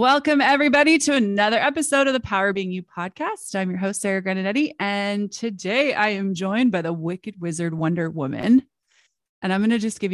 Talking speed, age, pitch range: 195 wpm, 30-49, 180-240 Hz